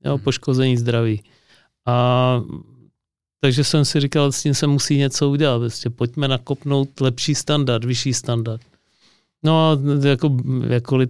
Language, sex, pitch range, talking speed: Czech, male, 120-135 Hz, 130 wpm